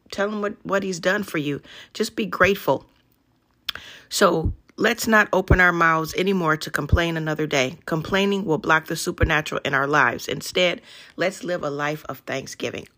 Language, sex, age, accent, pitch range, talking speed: English, female, 40-59, American, 150-180 Hz, 170 wpm